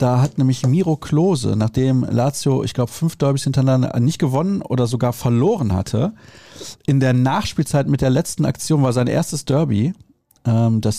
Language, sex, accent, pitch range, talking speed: German, male, German, 125-145 Hz, 165 wpm